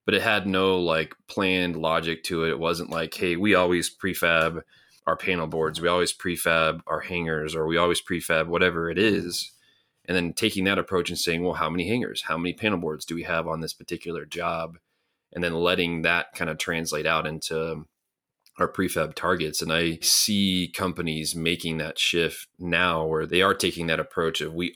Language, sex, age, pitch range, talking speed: English, male, 30-49, 80-90 Hz, 195 wpm